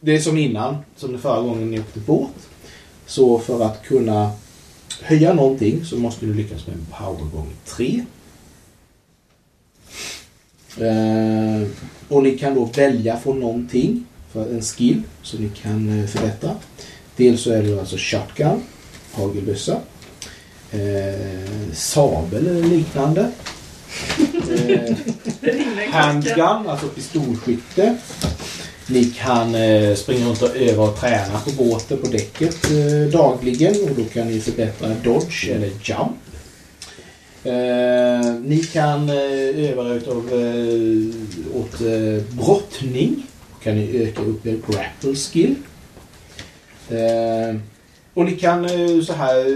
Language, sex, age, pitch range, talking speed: Swedish, male, 30-49, 105-140 Hz, 115 wpm